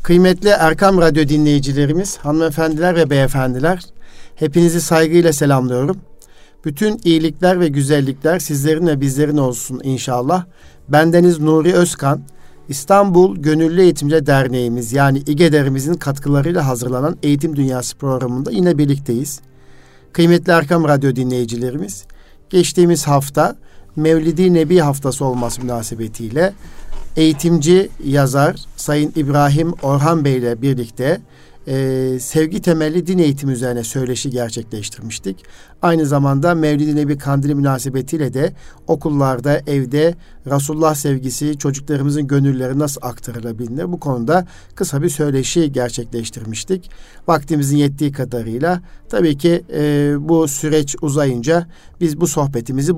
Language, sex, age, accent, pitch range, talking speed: Turkish, male, 50-69, native, 130-165 Hz, 105 wpm